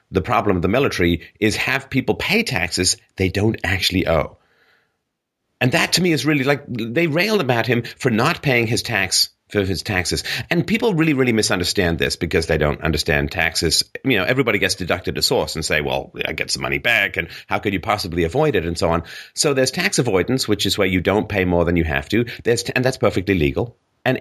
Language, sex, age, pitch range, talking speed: English, male, 30-49, 90-130 Hz, 225 wpm